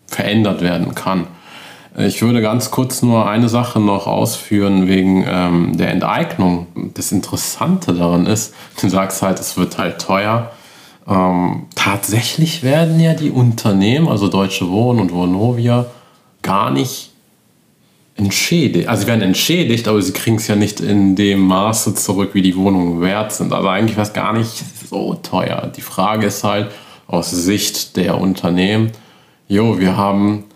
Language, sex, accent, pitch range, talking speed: German, male, German, 90-110 Hz, 155 wpm